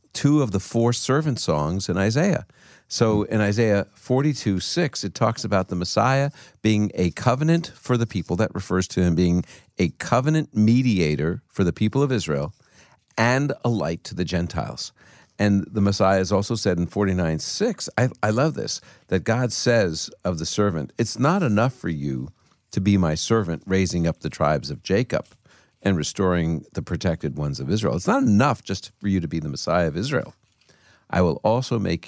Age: 50-69